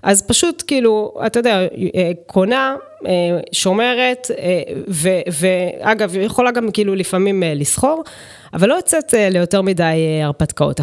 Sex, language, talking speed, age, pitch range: female, Hebrew, 110 wpm, 20-39, 175-275 Hz